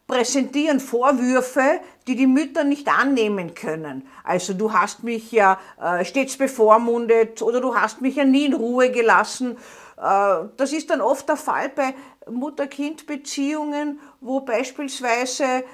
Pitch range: 225-290 Hz